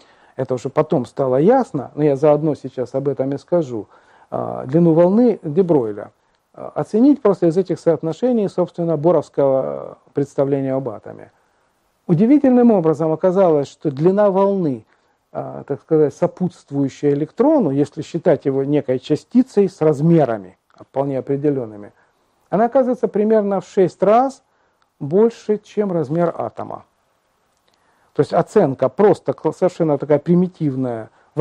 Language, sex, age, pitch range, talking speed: Russian, male, 50-69, 140-195 Hz, 120 wpm